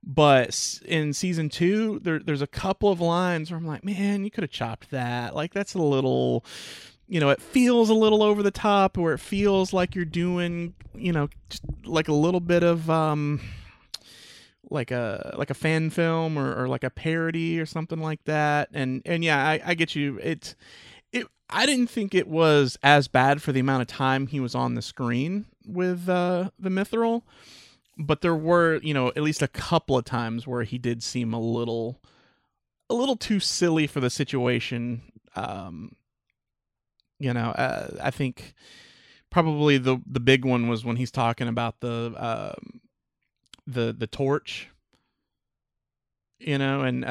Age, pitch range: 30-49, 125-170 Hz